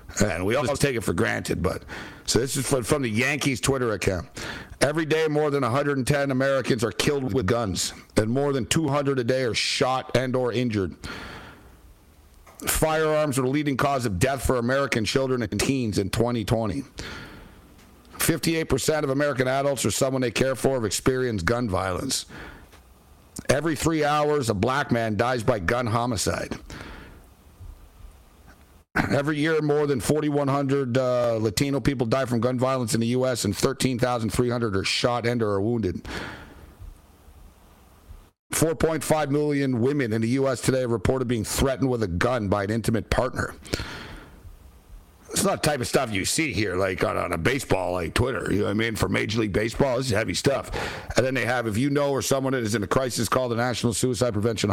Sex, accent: male, American